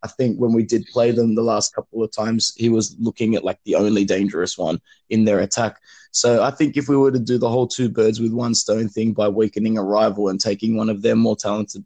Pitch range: 110-130 Hz